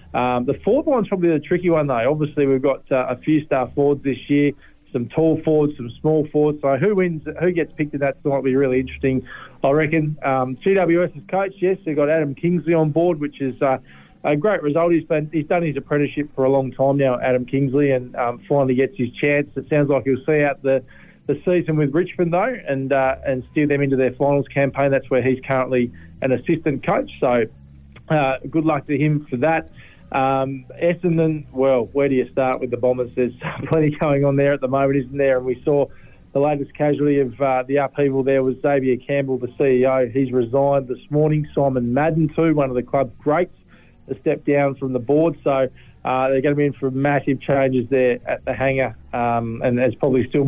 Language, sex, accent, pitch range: English, male, Australian, 130-150 Hz